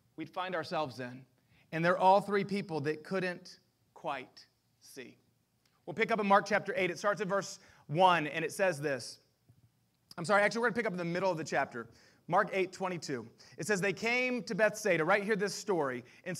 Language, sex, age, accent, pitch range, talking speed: English, male, 30-49, American, 155-200 Hz, 210 wpm